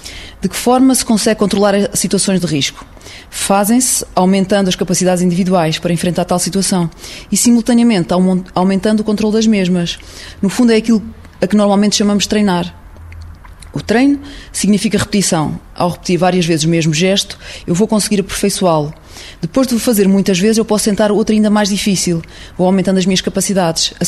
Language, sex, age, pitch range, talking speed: Portuguese, female, 20-39, 180-210 Hz, 175 wpm